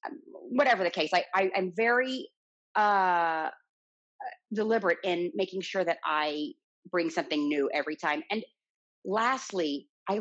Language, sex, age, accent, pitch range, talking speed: English, female, 30-49, American, 155-205 Hz, 130 wpm